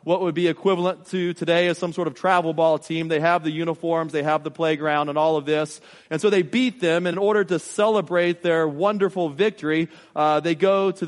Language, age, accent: English, 30-49, American